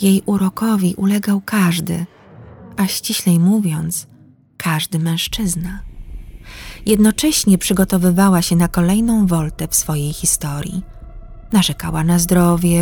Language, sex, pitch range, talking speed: Polish, female, 155-195 Hz, 100 wpm